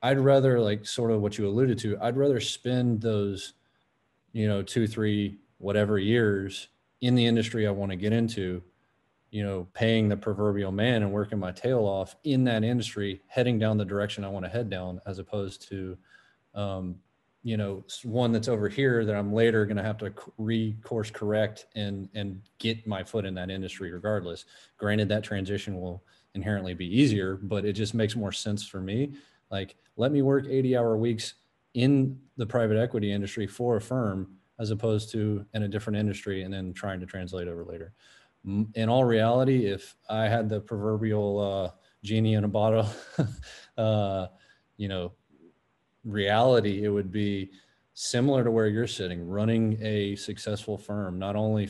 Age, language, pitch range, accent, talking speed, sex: 30-49, English, 100-115 Hz, American, 175 wpm, male